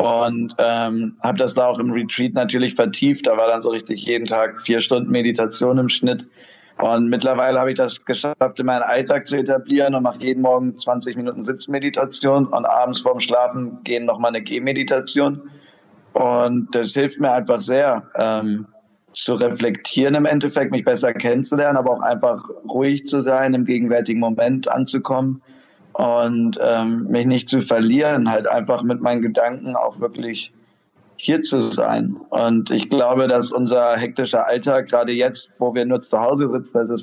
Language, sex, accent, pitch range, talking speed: German, male, German, 120-130 Hz, 170 wpm